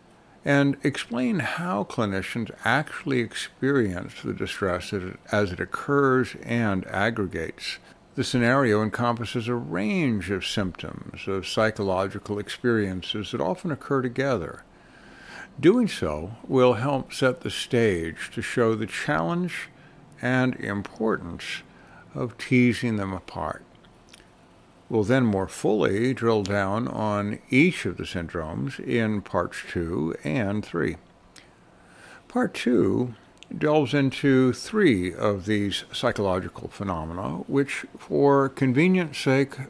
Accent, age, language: American, 60-79, English